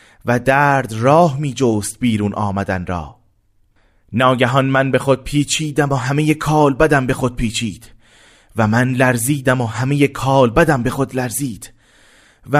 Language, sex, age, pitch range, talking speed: Persian, male, 30-49, 115-170 Hz, 145 wpm